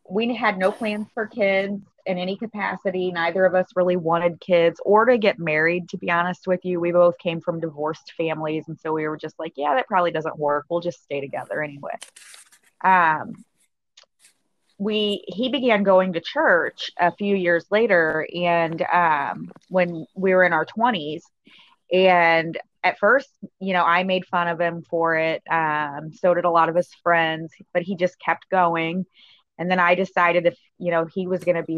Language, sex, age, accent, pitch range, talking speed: English, female, 20-39, American, 160-185 Hz, 195 wpm